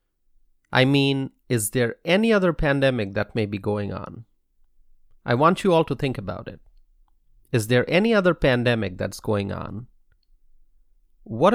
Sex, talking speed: male, 150 wpm